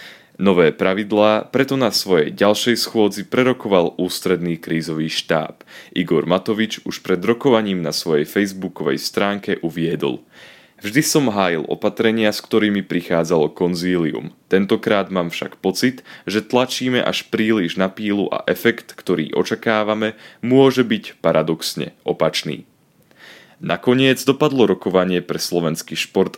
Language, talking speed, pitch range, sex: Slovak, 120 wpm, 85-115 Hz, male